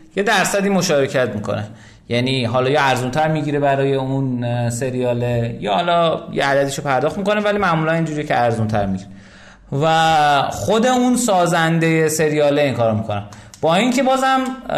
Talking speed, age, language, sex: 140 wpm, 30-49, Persian, male